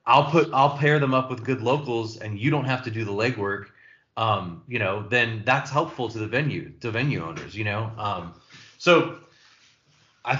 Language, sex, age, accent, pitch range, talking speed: English, male, 20-39, American, 105-130 Hz, 195 wpm